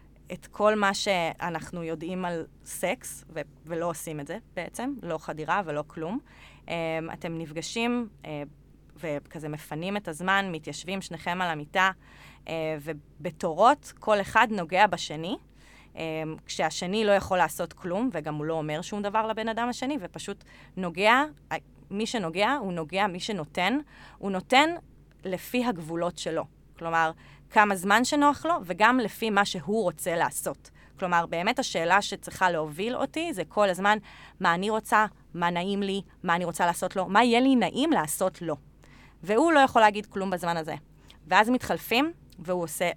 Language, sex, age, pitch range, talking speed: Hebrew, female, 20-39, 165-220 Hz, 150 wpm